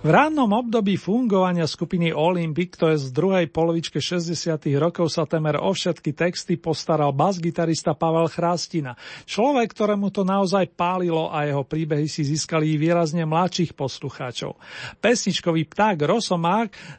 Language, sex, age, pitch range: Slovak, male, 40-59, 155-195 Hz